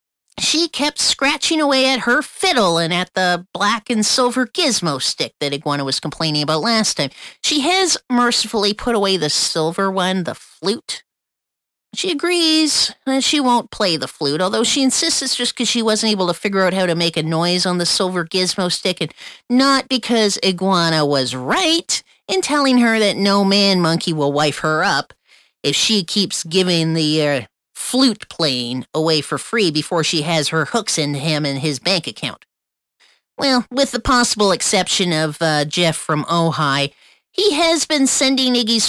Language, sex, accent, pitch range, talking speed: English, female, American, 160-250 Hz, 175 wpm